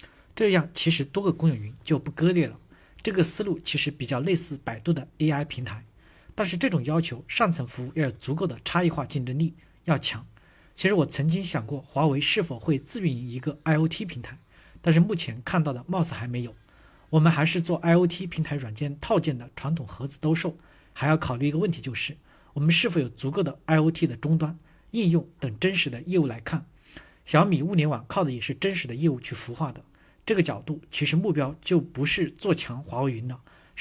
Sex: male